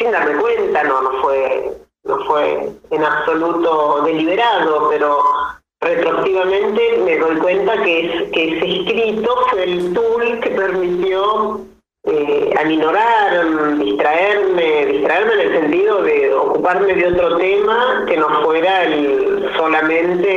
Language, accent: Spanish, Argentinian